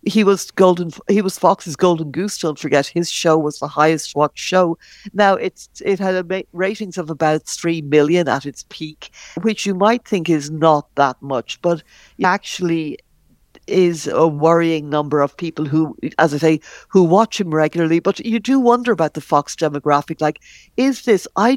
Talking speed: 185 wpm